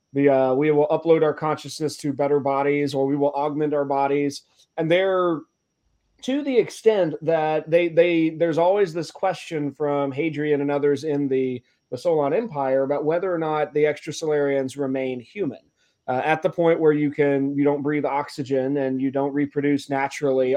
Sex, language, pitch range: male, English, 140-165 Hz